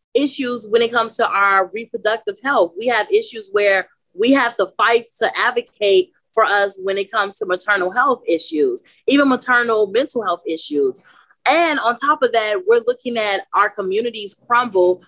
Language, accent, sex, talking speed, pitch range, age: English, American, female, 170 wpm, 185-265 Hz, 30-49